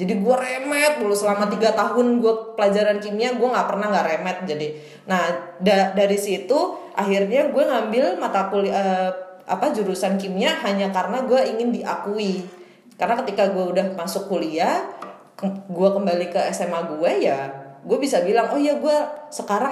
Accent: native